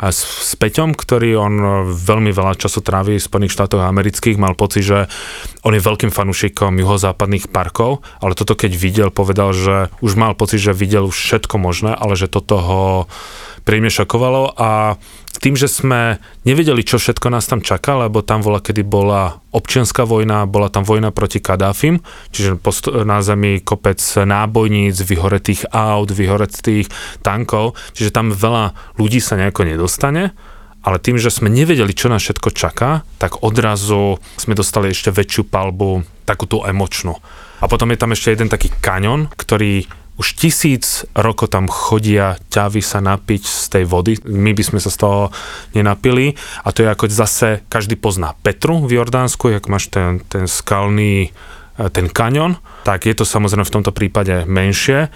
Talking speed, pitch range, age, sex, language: 160 wpm, 95-110 Hz, 30-49, male, Slovak